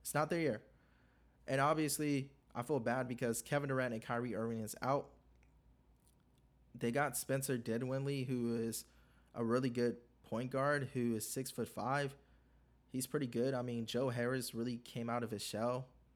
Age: 20-39